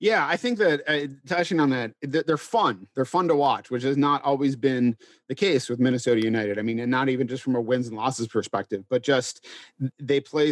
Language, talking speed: English, 230 wpm